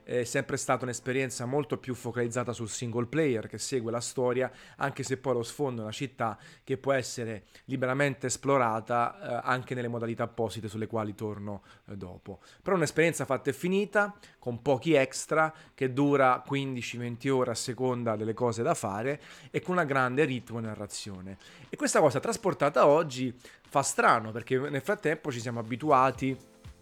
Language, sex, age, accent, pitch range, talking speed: Italian, male, 30-49, native, 115-140 Hz, 170 wpm